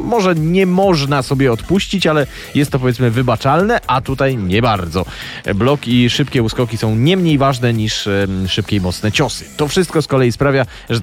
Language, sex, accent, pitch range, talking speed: Polish, male, native, 110-140 Hz, 180 wpm